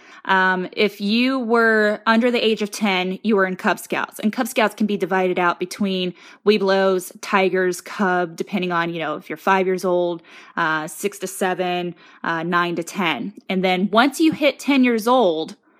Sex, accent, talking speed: female, American, 190 wpm